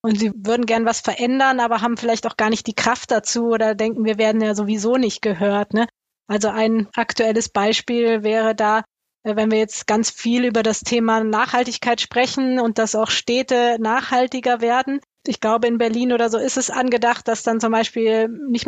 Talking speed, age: 195 wpm, 20-39